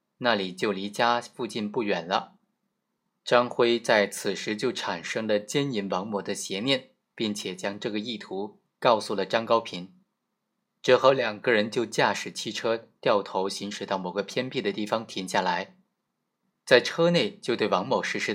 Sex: male